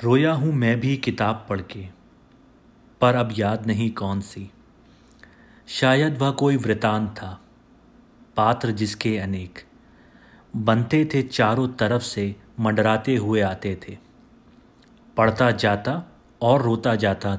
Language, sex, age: Hindi, male, 40-59